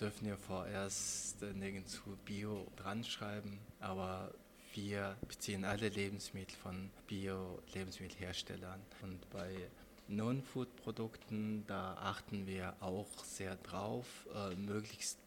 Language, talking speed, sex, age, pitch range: German, 105 wpm, male, 20-39, 95-105 Hz